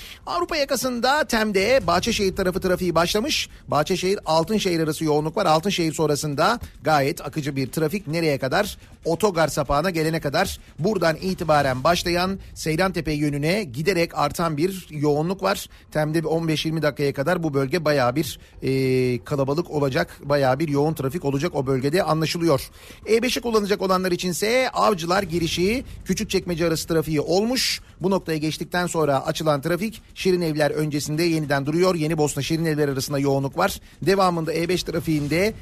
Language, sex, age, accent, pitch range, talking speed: Turkish, male, 40-59, native, 150-190 Hz, 140 wpm